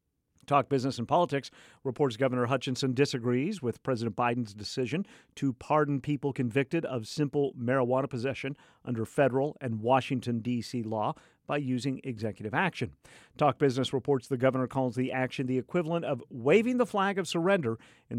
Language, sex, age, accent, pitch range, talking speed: English, male, 50-69, American, 120-150 Hz, 155 wpm